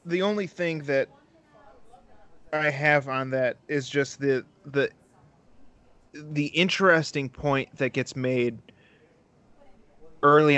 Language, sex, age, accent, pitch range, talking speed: English, male, 30-49, American, 125-145 Hz, 110 wpm